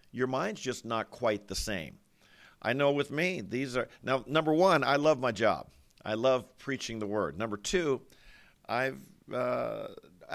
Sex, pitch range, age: male, 115-155 Hz, 50-69